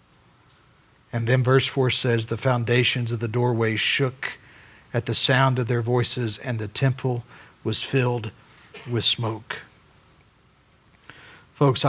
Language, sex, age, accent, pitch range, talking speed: English, male, 60-79, American, 125-195 Hz, 125 wpm